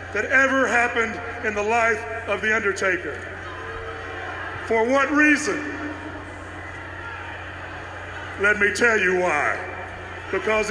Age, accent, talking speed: 40-59, American, 100 wpm